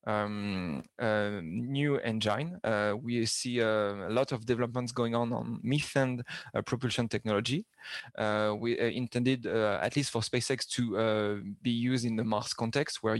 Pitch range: 110-130 Hz